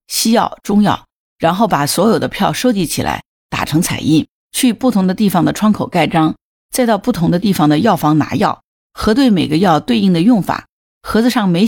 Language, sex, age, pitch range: Chinese, female, 50-69, 165-215 Hz